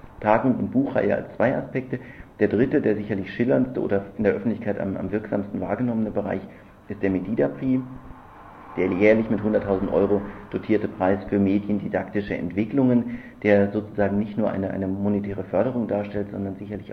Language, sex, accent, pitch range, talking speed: German, male, German, 95-105 Hz, 155 wpm